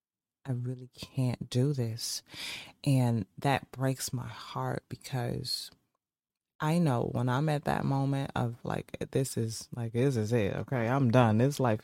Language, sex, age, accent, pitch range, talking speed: English, female, 20-39, American, 125-160 Hz, 155 wpm